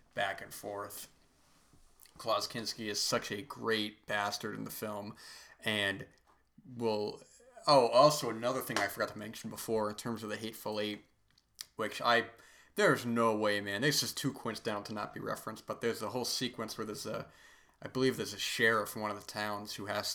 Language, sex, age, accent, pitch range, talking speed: English, male, 20-39, American, 105-115 Hz, 195 wpm